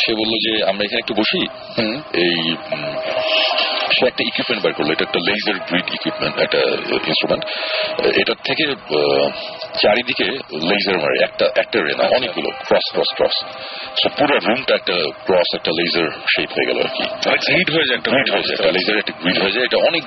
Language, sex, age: Bengali, male, 40-59